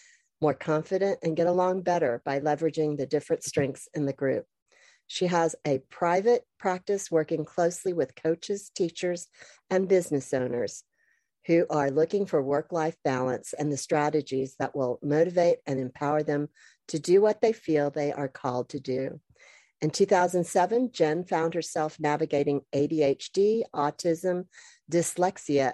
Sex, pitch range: female, 145-180 Hz